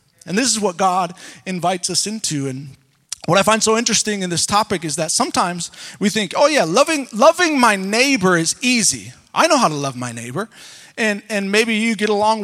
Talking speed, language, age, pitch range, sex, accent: 210 wpm, English, 30-49, 175-240 Hz, male, American